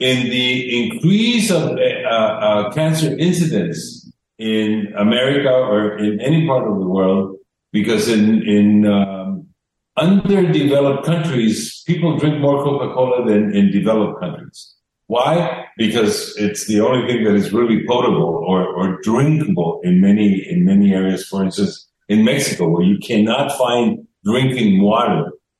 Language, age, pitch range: English, 50-69, 105-155 Hz